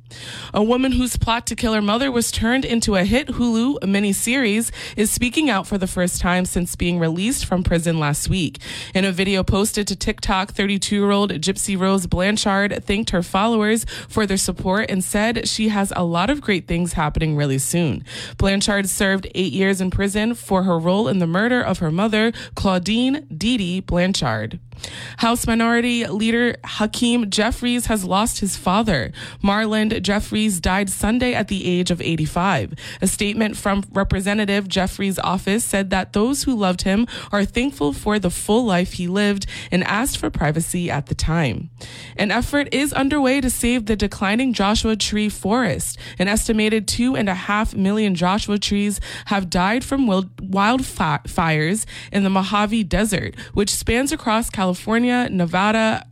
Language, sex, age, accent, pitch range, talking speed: English, female, 20-39, American, 180-225 Hz, 165 wpm